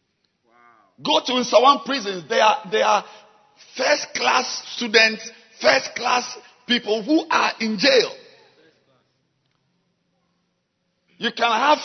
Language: English